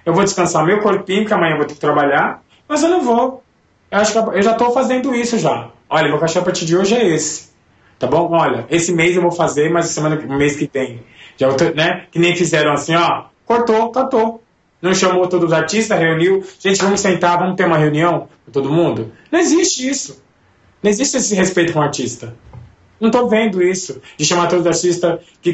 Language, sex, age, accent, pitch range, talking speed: Portuguese, male, 20-39, Brazilian, 130-185 Hz, 210 wpm